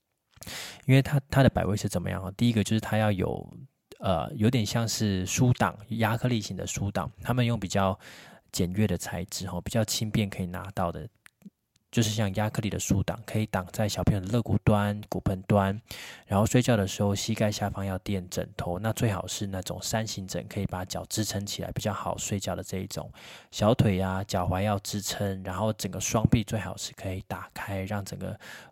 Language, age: Chinese, 20-39